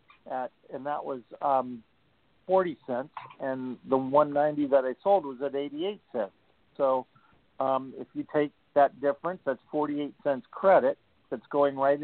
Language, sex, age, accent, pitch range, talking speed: English, male, 50-69, American, 135-155 Hz, 170 wpm